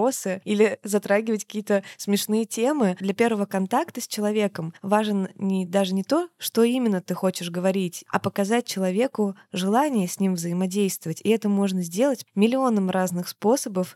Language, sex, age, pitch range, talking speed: Russian, female, 20-39, 190-230 Hz, 140 wpm